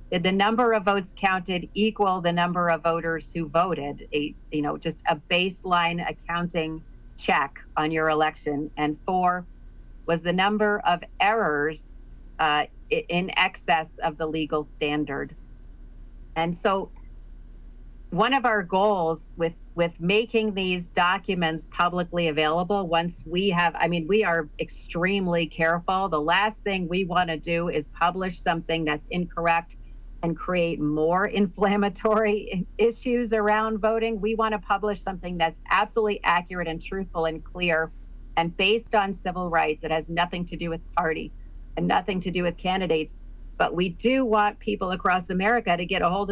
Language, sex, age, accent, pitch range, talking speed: English, female, 40-59, American, 165-200 Hz, 155 wpm